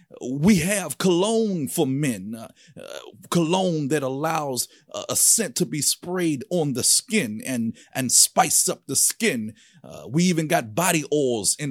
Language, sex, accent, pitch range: English, male, American, 125-180 Hz